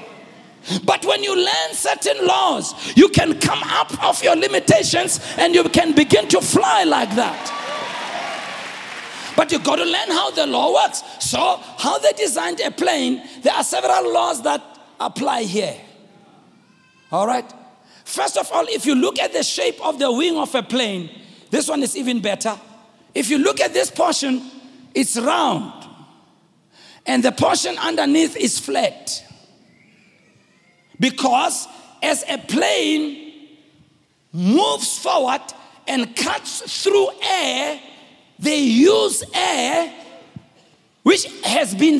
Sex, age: male, 50-69